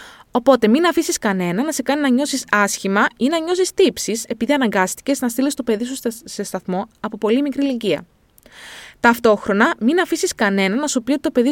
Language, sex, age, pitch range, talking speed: Greek, female, 20-39, 210-290 Hz, 195 wpm